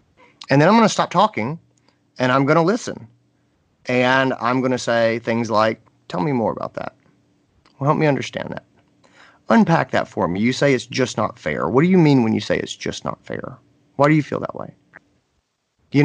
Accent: American